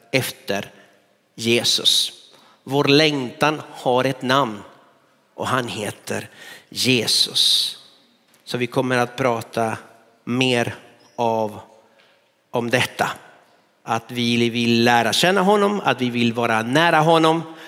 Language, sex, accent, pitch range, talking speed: Swedish, male, native, 120-170 Hz, 105 wpm